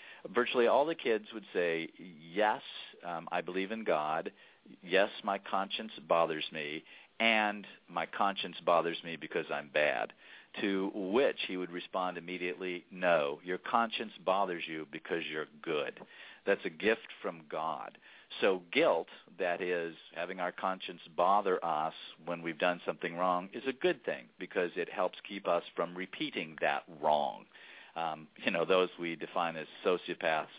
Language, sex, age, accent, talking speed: English, male, 50-69, American, 155 wpm